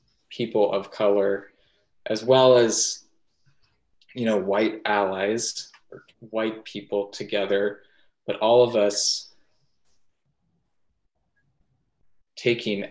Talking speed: 90 wpm